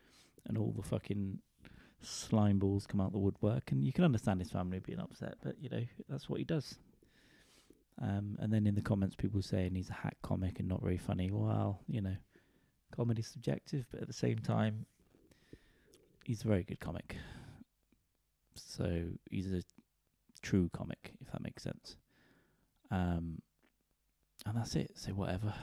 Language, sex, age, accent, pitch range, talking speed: English, male, 20-39, British, 95-115 Hz, 170 wpm